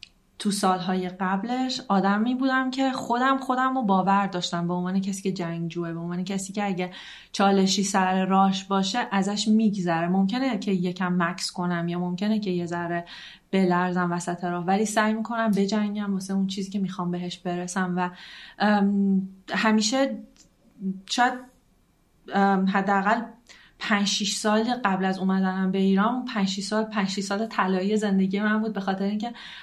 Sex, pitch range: female, 185-215 Hz